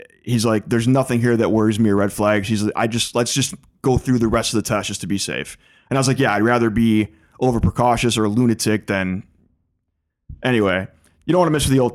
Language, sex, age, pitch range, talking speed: English, male, 20-39, 100-125 Hz, 250 wpm